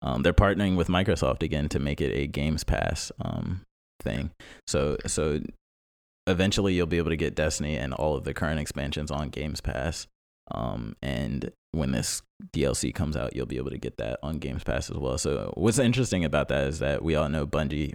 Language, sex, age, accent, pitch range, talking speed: English, male, 20-39, American, 70-80 Hz, 205 wpm